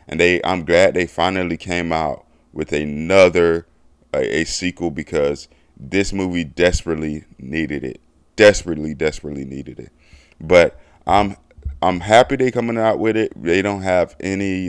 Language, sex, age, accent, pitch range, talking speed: English, male, 20-39, American, 75-95 Hz, 145 wpm